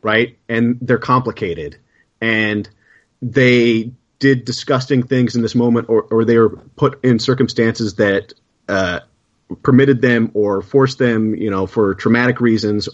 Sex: male